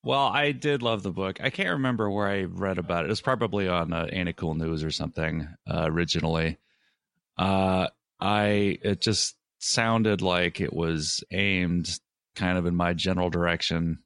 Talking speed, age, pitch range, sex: 180 wpm, 30-49, 85-110 Hz, male